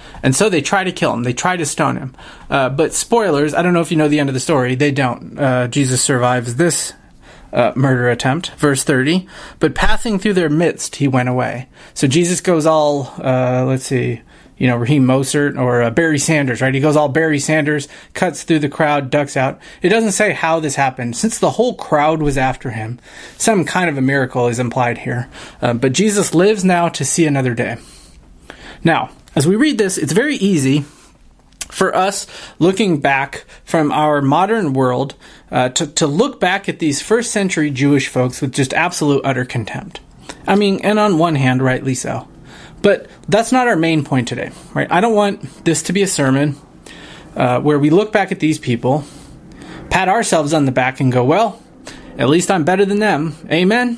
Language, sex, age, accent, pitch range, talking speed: English, male, 30-49, American, 130-180 Hz, 200 wpm